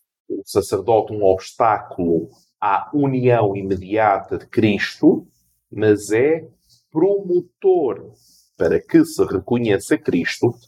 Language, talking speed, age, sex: Portuguese, 95 wpm, 40-59, male